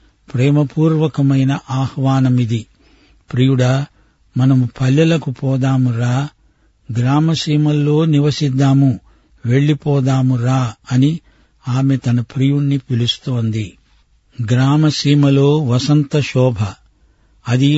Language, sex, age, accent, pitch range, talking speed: Telugu, male, 50-69, native, 125-145 Hz, 55 wpm